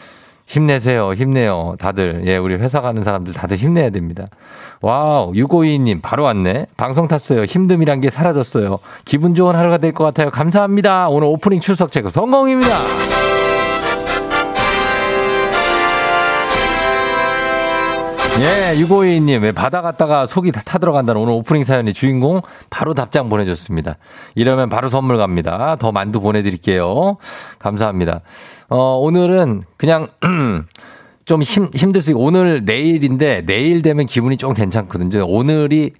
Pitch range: 95-150 Hz